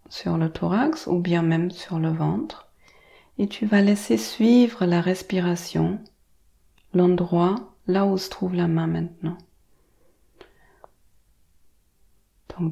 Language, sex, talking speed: French, female, 120 wpm